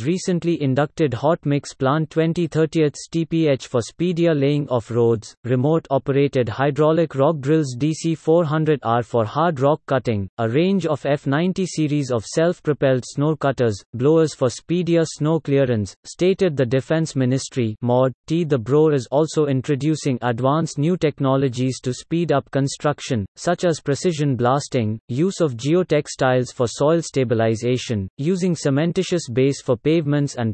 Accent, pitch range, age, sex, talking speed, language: Indian, 130-160 Hz, 30-49, male, 140 wpm, English